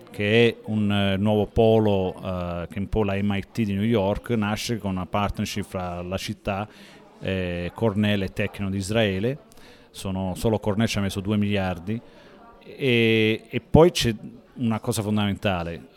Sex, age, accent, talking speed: male, 40-59, native, 155 wpm